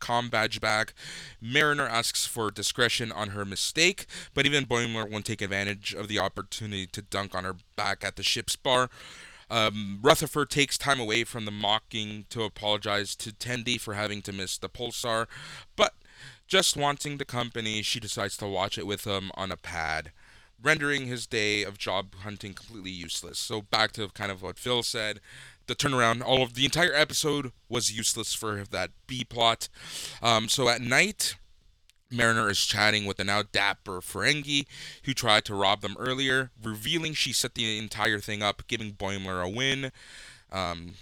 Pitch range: 100-125 Hz